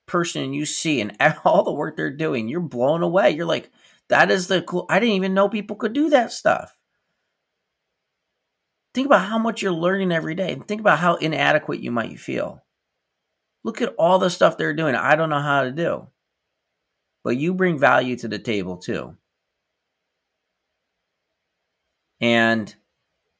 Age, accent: 30-49, American